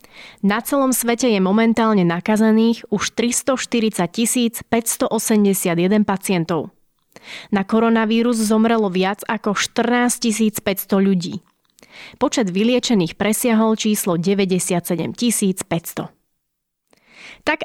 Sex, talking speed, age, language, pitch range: female, 85 wpm, 30-49, Slovak, 195-240 Hz